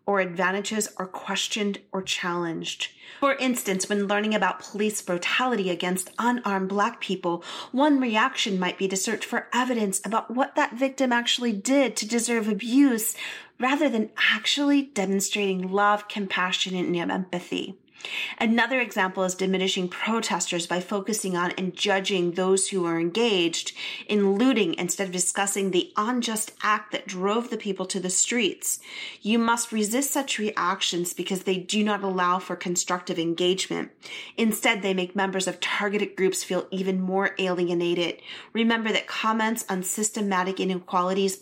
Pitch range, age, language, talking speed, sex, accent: 185-230 Hz, 30-49, English, 145 wpm, female, American